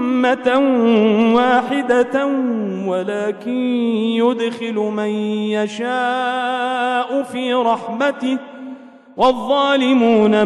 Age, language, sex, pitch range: 40-59, Arabic, male, 245-315 Hz